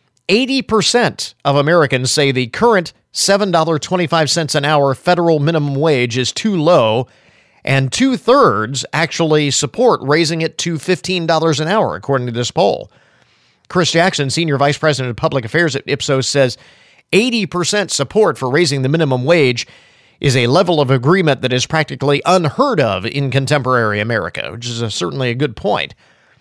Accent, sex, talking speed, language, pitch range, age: American, male, 150 wpm, English, 125-165 Hz, 50-69